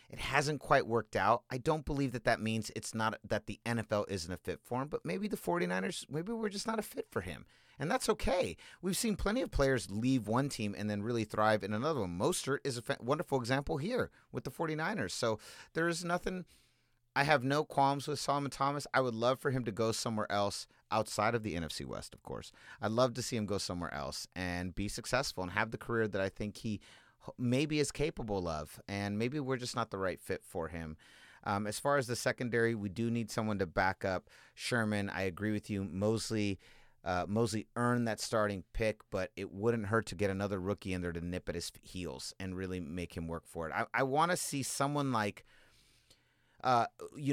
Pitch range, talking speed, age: 100-135 Hz, 220 wpm, 30-49